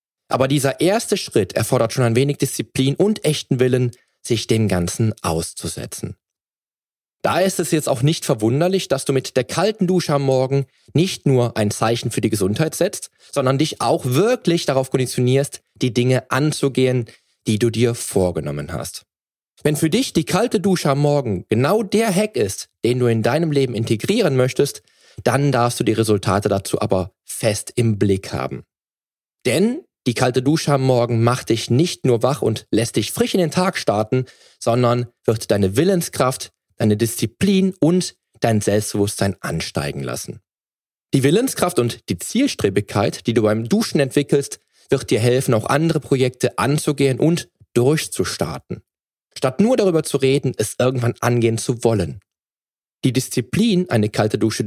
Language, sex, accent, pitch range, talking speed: German, male, German, 115-150 Hz, 160 wpm